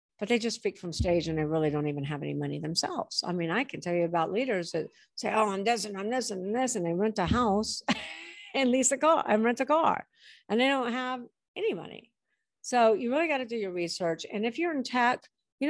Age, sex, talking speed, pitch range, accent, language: 50-69, female, 255 wpm, 185-250 Hz, American, English